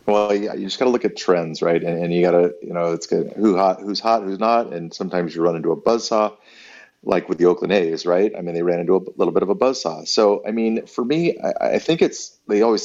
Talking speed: 280 wpm